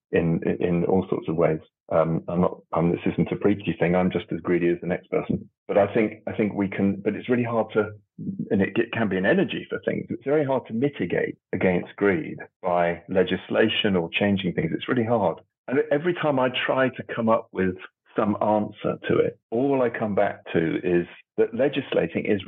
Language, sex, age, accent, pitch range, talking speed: English, male, 40-59, British, 90-120 Hz, 215 wpm